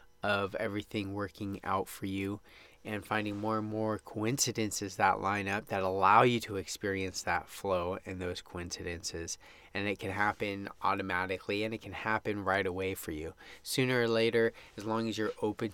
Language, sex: English, male